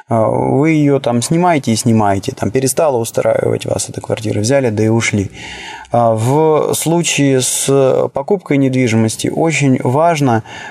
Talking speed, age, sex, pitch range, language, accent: 130 wpm, 20-39, male, 120-150 Hz, Russian, native